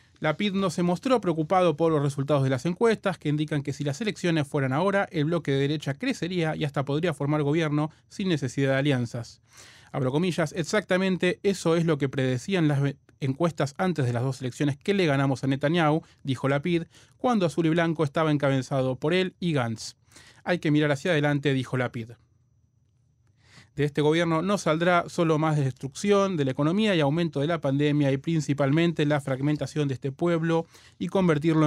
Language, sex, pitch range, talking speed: Spanish, male, 135-165 Hz, 185 wpm